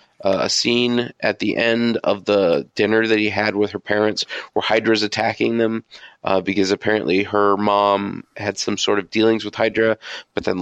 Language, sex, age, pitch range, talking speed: English, male, 30-49, 100-115 Hz, 185 wpm